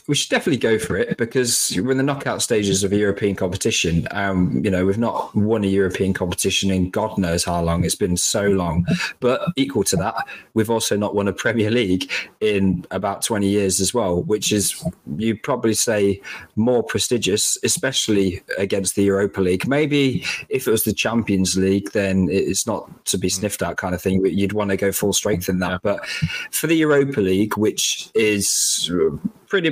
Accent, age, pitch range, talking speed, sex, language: British, 20-39, 95-110 Hz, 195 wpm, male, English